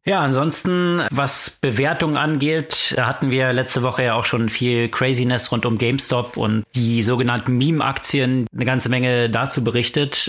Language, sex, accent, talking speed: German, male, German, 165 wpm